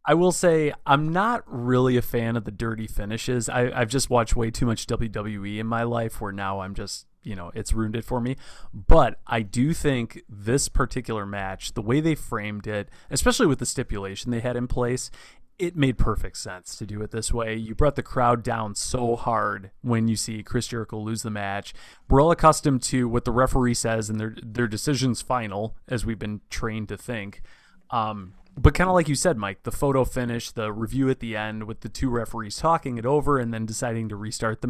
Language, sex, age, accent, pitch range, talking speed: English, male, 20-39, American, 110-130 Hz, 220 wpm